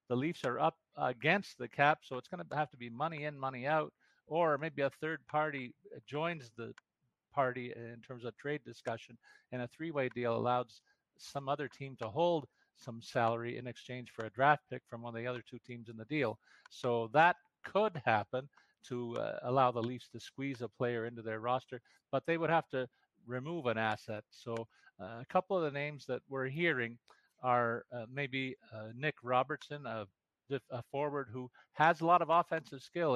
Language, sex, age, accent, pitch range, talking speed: English, male, 50-69, American, 120-150 Hz, 195 wpm